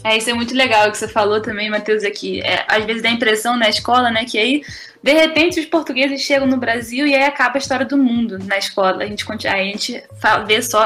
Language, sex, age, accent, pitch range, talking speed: Portuguese, female, 10-29, Brazilian, 210-275 Hz, 255 wpm